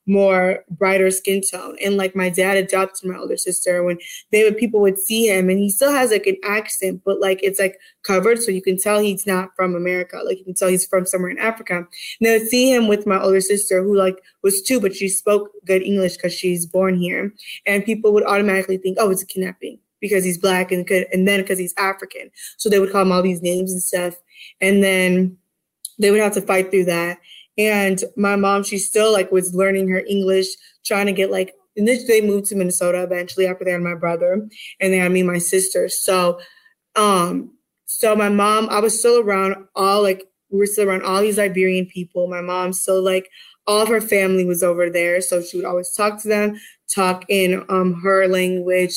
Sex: female